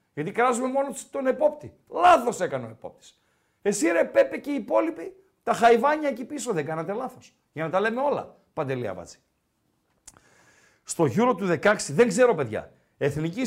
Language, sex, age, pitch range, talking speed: Greek, male, 50-69, 180-250 Hz, 165 wpm